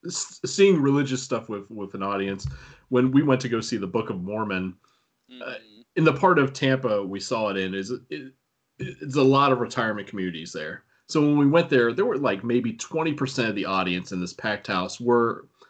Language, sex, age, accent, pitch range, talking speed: English, male, 30-49, American, 115-150 Hz, 205 wpm